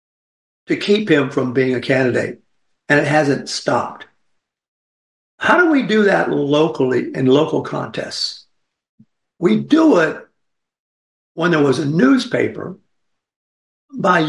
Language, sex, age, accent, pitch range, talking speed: English, male, 60-79, American, 135-190 Hz, 120 wpm